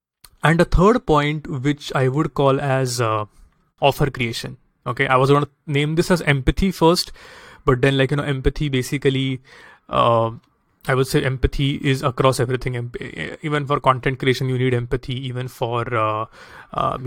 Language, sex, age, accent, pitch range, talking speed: English, male, 30-49, Indian, 130-150 Hz, 170 wpm